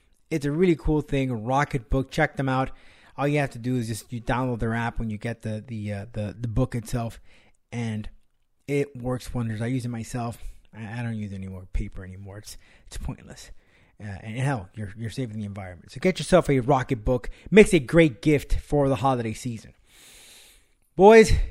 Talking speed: 205 wpm